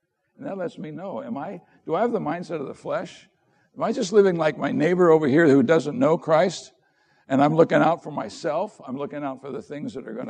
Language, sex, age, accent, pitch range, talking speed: English, male, 60-79, American, 150-210 Hz, 250 wpm